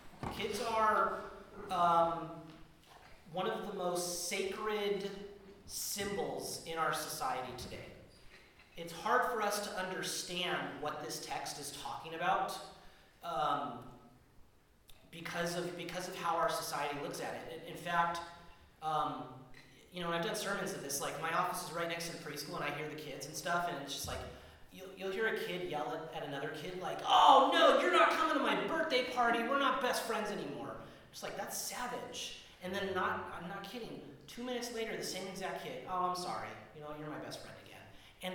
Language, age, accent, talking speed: English, 30-49, American, 185 wpm